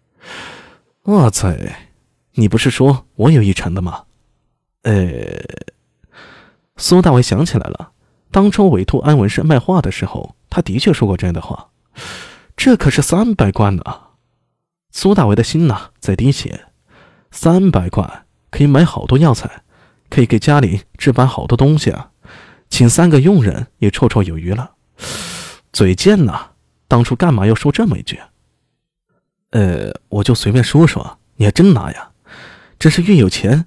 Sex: male